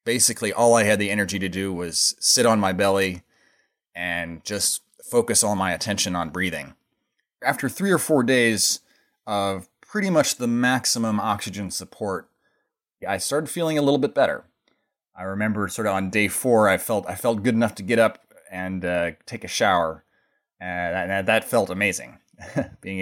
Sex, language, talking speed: male, English, 175 wpm